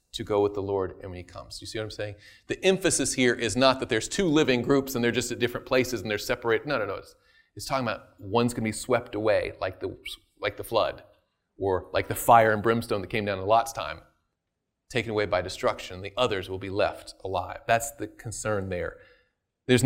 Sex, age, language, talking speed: male, 30-49, English, 235 wpm